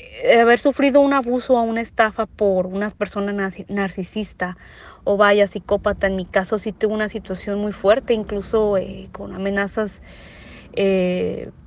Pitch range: 185-230 Hz